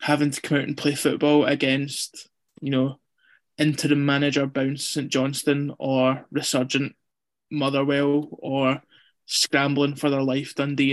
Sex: male